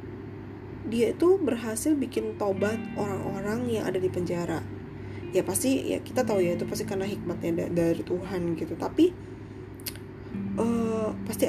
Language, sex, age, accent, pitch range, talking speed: Indonesian, female, 20-39, native, 125-200 Hz, 135 wpm